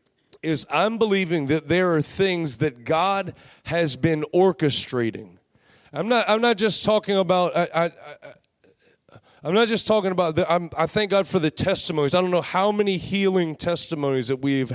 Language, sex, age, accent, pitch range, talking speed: English, male, 30-49, American, 155-190 Hz, 180 wpm